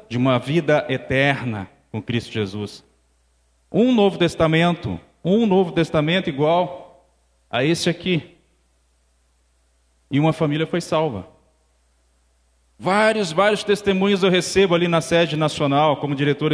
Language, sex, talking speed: Portuguese, male, 120 wpm